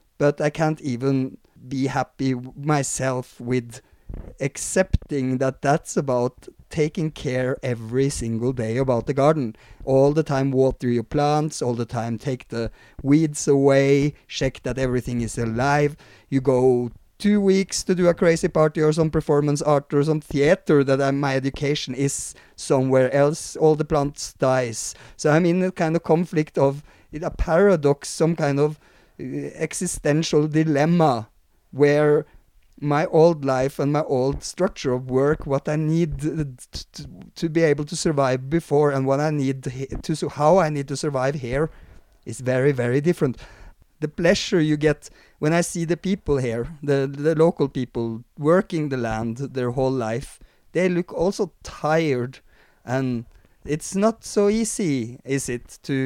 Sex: male